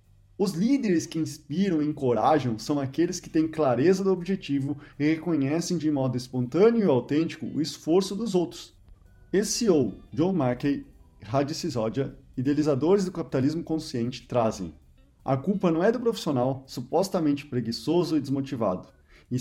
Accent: Brazilian